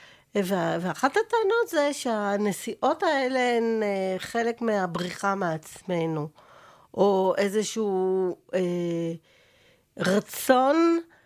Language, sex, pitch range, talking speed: Hebrew, female, 185-240 Hz, 70 wpm